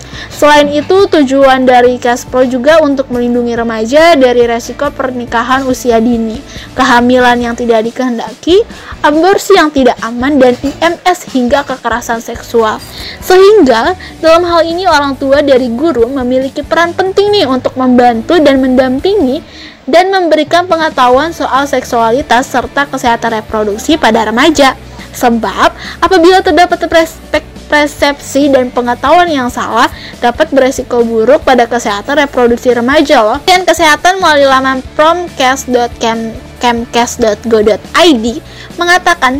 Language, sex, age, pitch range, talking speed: Indonesian, female, 20-39, 240-310 Hz, 115 wpm